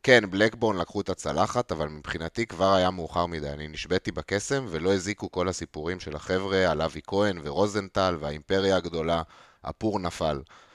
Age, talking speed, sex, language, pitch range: 30-49, 155 wpm, male, Hebrew, 80-100 Hz